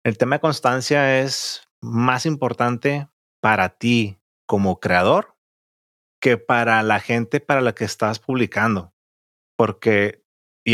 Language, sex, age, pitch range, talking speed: Spanish, male, 30-49, 105-130 Hz, 125 wpm